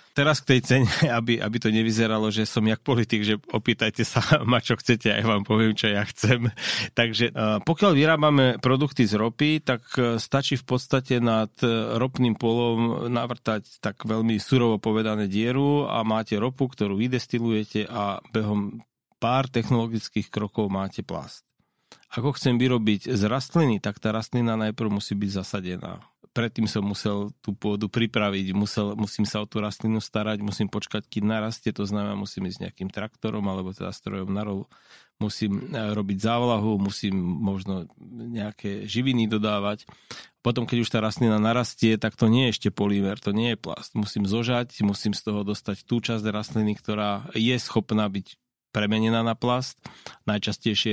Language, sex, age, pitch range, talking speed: Slovak, male, 40-59, 105-120 Hz, 160 wpm